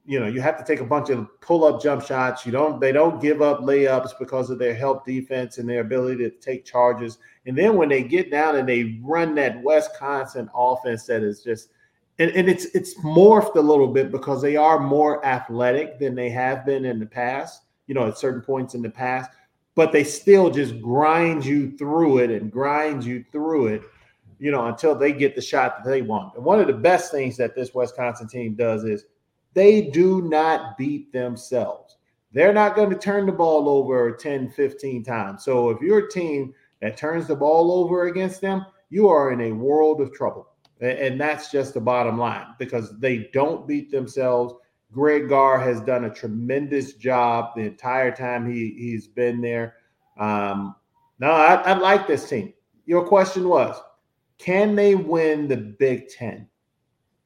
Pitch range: 125-155 Hz